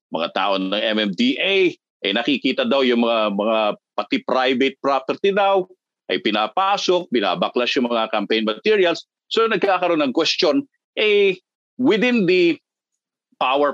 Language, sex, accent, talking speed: Filipino, male, native, 125 wpm